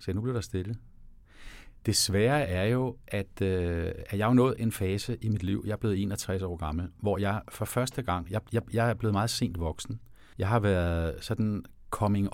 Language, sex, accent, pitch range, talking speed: Danish, male, native, 95-115 Hz, 210 wpm